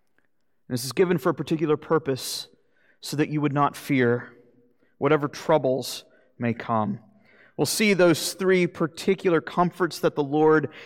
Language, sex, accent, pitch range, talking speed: English, male, American, 135-190 Hz, 145 wpm